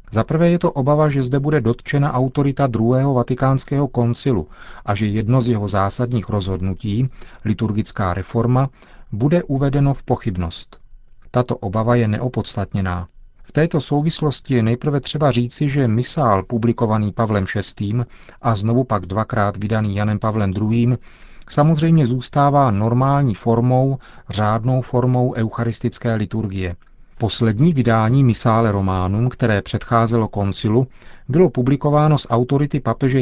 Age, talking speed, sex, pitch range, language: 40-59, 125 wpm, male, 110-130 Hz, Czech